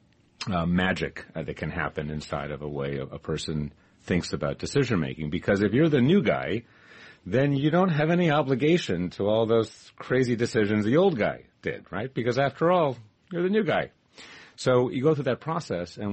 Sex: male